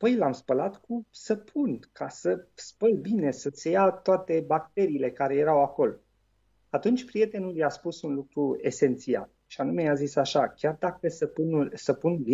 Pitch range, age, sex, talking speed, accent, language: 140-180 Hz, 30-49, male, 155 wpm, native, Romanian